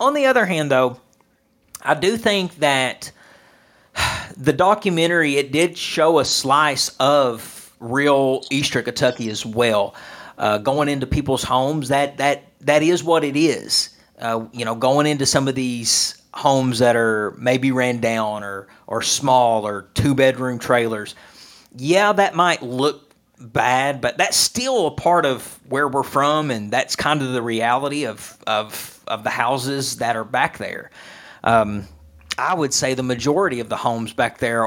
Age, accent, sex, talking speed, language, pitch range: 40-59, American, male, 165 wpm, English, 120-155 Hz